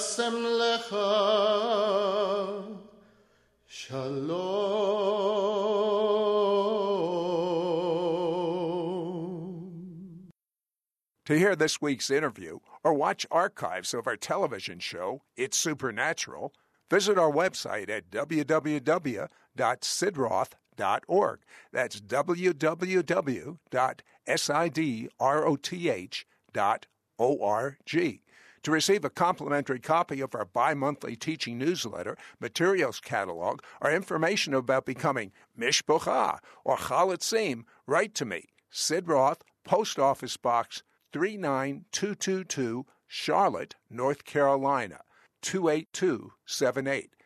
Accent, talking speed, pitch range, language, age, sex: American, 65 wpm, 140-200 Hz, English, 60-79, male